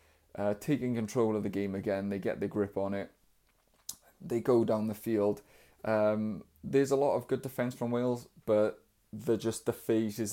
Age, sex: 20-39, male